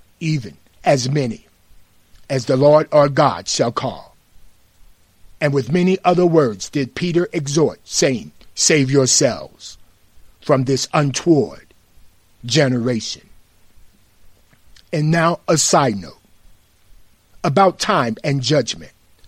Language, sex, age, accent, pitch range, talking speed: English, male, 50-69, American, 95-160 Hz, 105 wpm